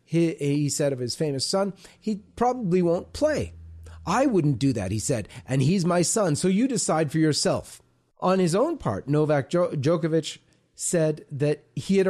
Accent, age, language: American, 40-59, English